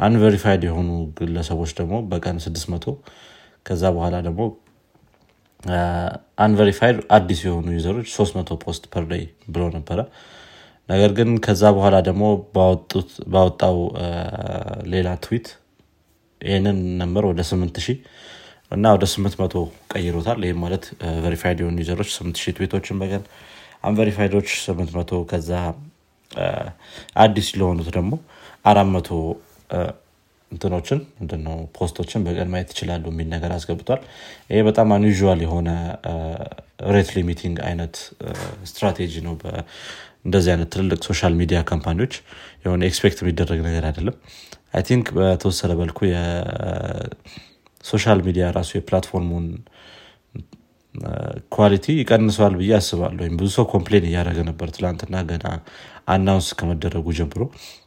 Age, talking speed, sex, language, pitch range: 30-49, 90 wpm, male, Amharic, 85-100 Hz